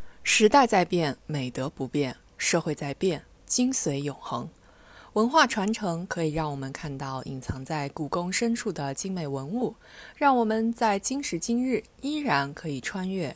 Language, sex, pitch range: Chinese, female, 145-225 Hz